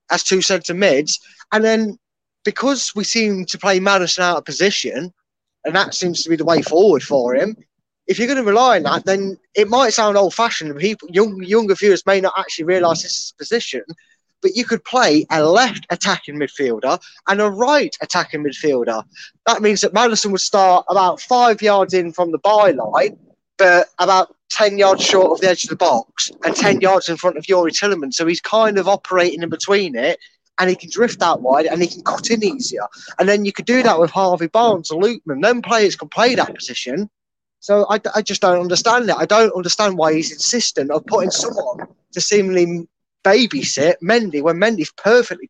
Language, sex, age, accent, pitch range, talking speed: English, male, 20-39, British, 175-225 Hz, 205 wpm